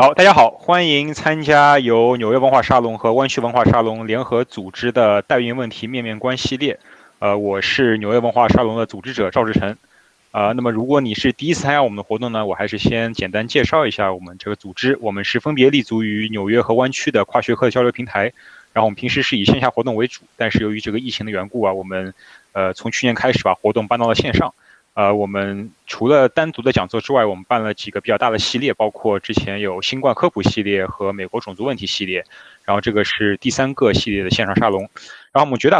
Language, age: Chinese, 20-39